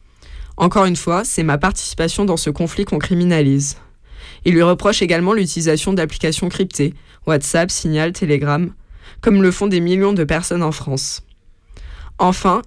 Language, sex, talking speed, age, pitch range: French, female, 145 wpm, 20-39, 155-190 Hz